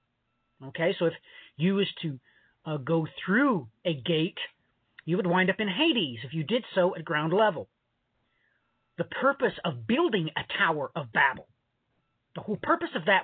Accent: American